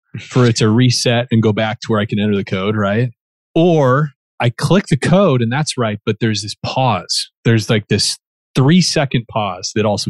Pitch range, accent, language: 110-140 Hz, American, English